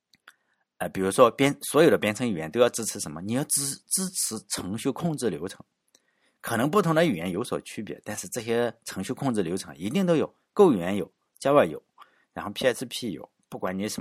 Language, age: Chinese, 50-69